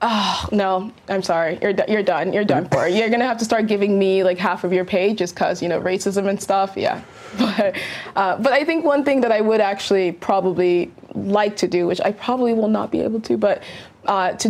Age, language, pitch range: 20-39, English, 185-220 Hz